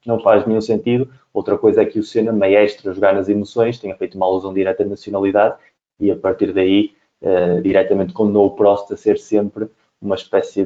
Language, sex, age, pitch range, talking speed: English, male, 20-39, 95-110 Hz, 205 wpm